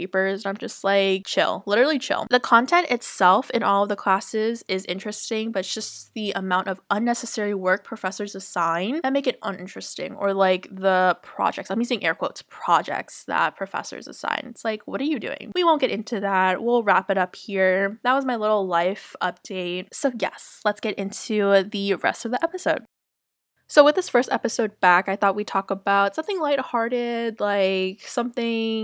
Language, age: English, 20-39